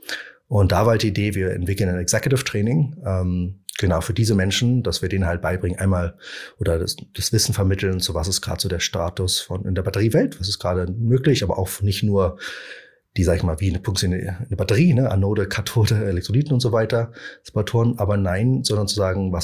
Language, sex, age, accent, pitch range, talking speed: German, male, 30-49, German, 90-110 Hz, 210 wpm